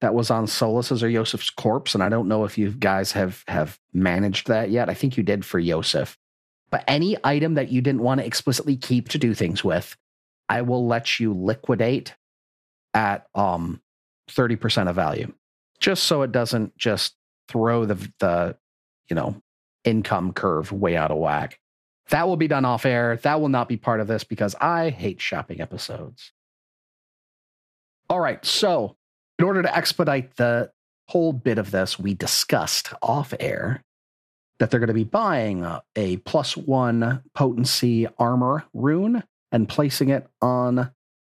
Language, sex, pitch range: English, male, 100-135 Hz